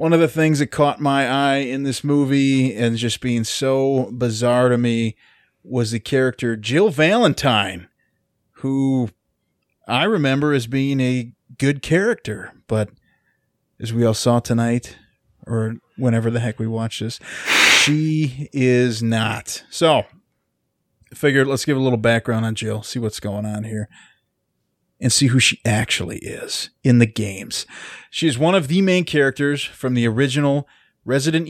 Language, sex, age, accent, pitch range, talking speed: English, male, 30-49, American, 115-145 Hz, 155 wpm